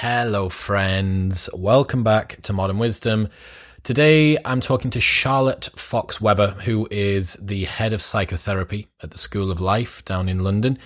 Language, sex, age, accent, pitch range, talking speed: English, male, 20-39, British, 95-115 Hz, 150 wpm